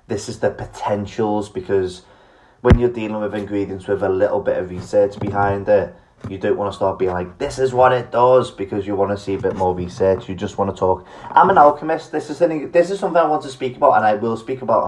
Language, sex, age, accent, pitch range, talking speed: English, male, 20-39, British, 100-130 Hz, 245 wpm